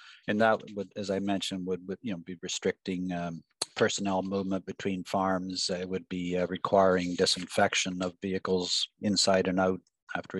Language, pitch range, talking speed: English, 95-105 Hz, 175 wpm